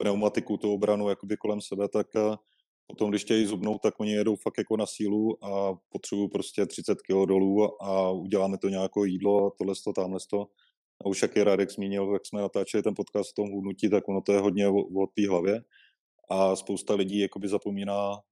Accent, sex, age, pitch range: native, male, 20-39, 95-105 Hz